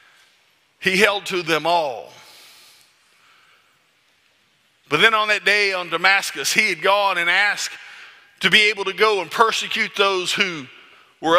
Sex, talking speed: male, 140 wpm